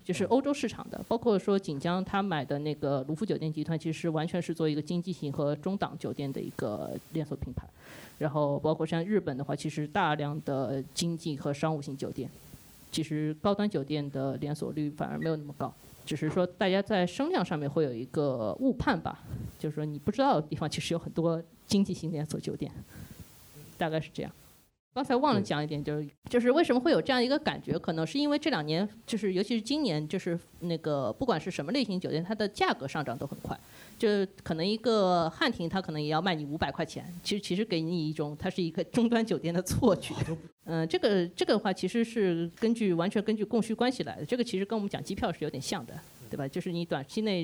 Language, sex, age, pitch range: Chinese, female, 20-39, 150-205 Hz